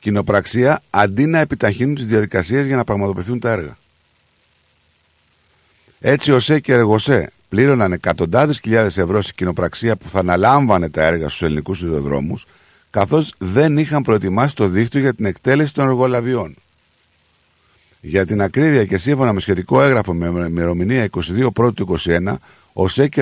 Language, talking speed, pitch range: Greek, 145 wpm, 80-120 Hz